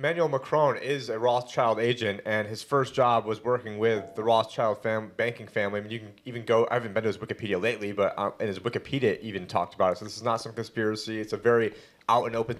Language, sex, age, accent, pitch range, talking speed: English, male, 30-49, American, 115-140 Hz, 245 wpm